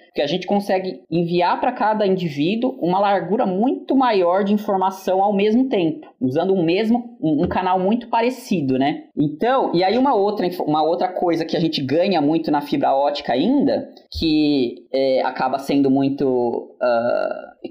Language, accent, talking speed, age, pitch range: Portuguese, Brazilian, 165 wpm, 20-39, 160-225 Hz